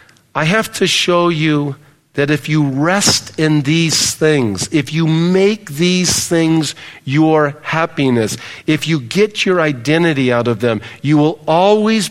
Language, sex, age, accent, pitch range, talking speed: English, male, 50-69, American, 150-190 Hz, 150 wpm